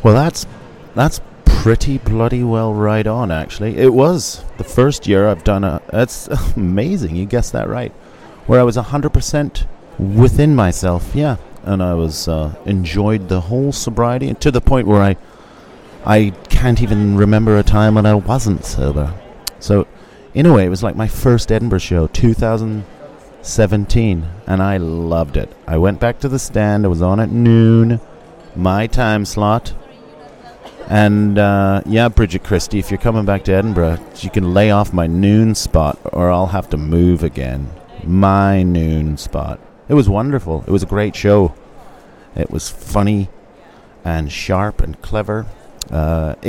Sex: male